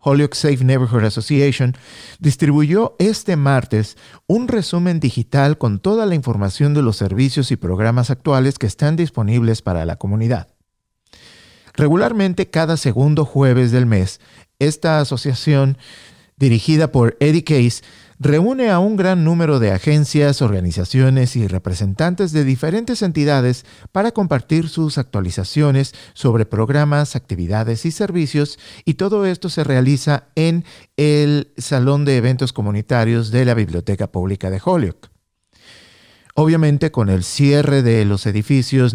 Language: English